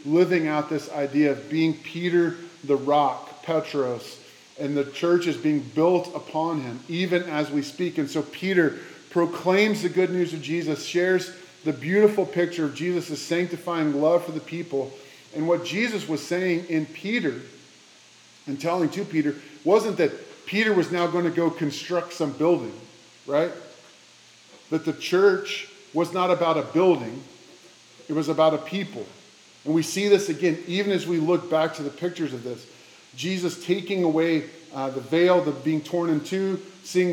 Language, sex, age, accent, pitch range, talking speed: English, male, 30-49, American, 150-175 Hz, 165 wpm